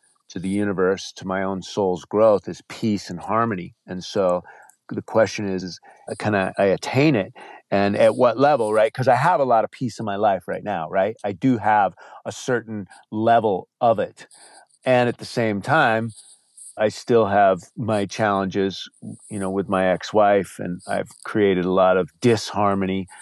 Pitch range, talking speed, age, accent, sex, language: 95-110 Hz, 185 wpm, 40-59, American, male, English